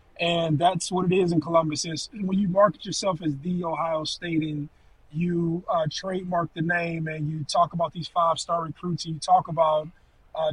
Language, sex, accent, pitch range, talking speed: English, male, American, 160-190 Hz, 195 wpm